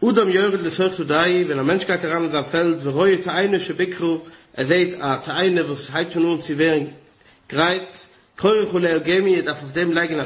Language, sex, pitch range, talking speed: English, male, 155-180 Hz, 180 wpm